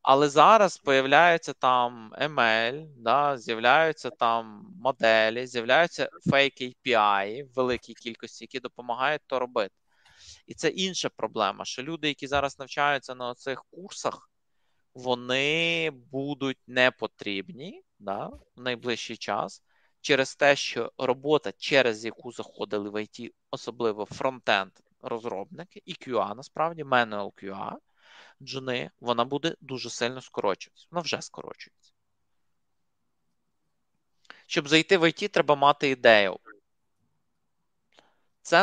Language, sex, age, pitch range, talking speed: Ukrainian, male, 20-39, 120-155 Hz, 110 wpm